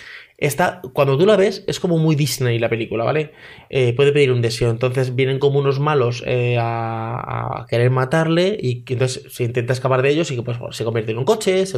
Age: 20-39